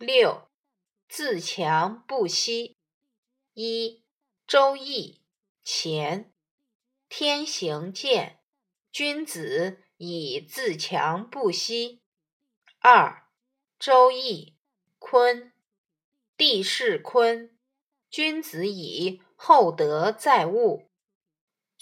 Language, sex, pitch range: Chinese, female, 190-285 Hz